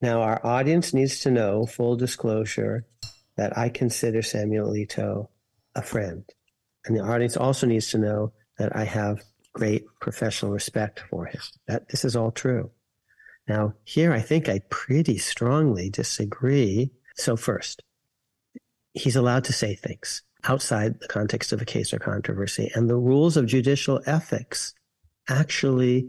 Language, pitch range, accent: English, 110-135 Hz, American